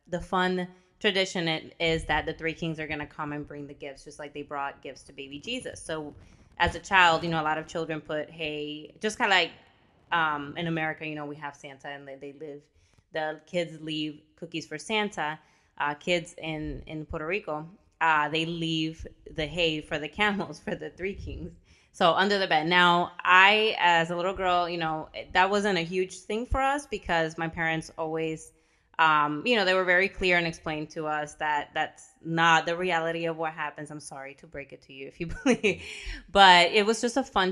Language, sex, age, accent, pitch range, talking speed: English, female, 20-39, American, 150-175 Hz, 215 wpm